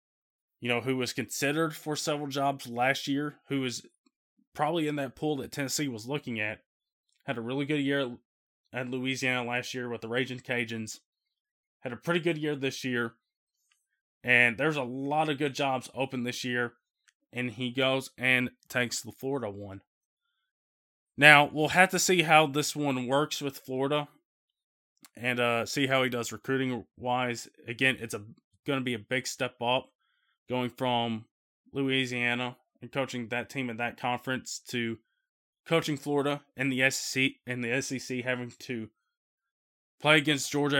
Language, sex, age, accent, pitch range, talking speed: English, male, 20-39, American, 125-145 Hz, 165 wpm